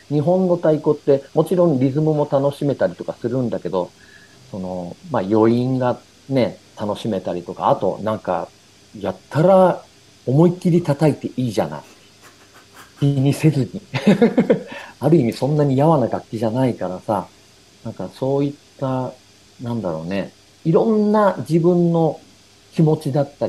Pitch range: 110-165 Hz